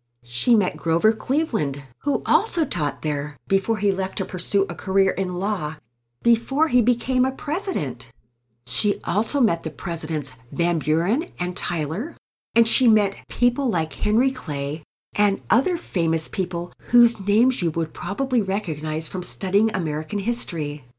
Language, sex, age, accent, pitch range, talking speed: English, female, 50-69, American, 150-220 Hz, 150 wpm